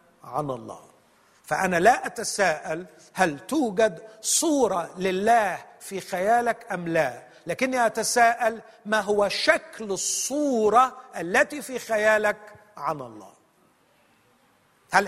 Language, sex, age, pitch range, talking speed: Arabic, male, 50-69, 170-245 Hz, 100 wpm